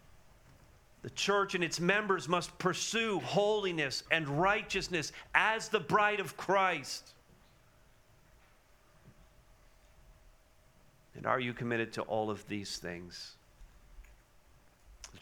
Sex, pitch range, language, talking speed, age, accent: male, 110-135 Hz, English, 100 wpm, 40-59, American